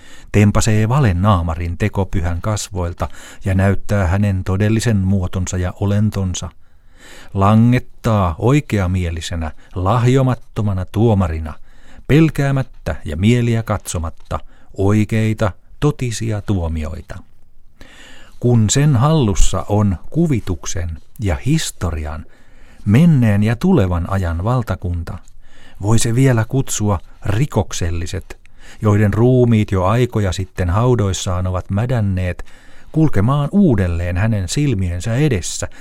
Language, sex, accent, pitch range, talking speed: Finnish, male, native, 90-115 Hz, 90 wpm